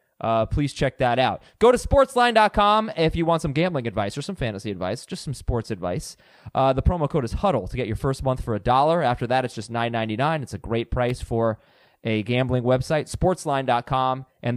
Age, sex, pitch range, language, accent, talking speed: 20-39, male, 120-165 Hz, English, American, 210 wpm